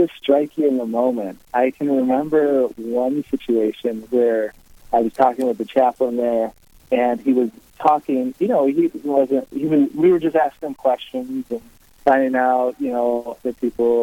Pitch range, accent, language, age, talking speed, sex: 115-145 Hz, American, English, 30-49, 175 wpm, male